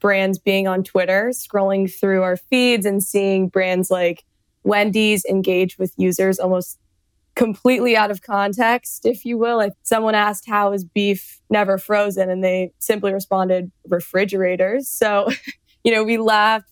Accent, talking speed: American, 150 wpm